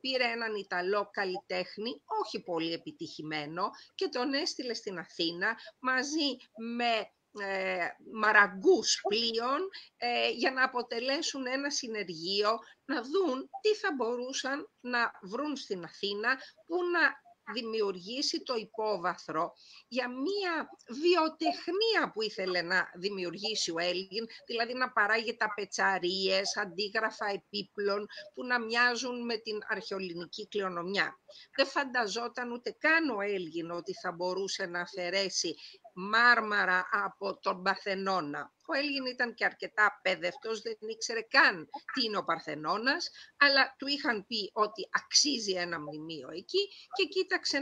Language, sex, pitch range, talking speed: Greek, female, 195-270 Hz, 120 wpm